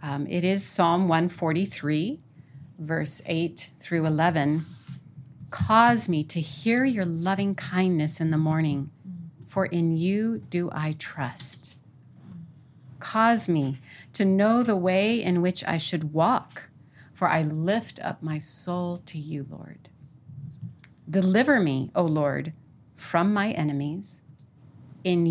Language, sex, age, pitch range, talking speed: English, female, 40-59, 145-190 Hz, 125 wpm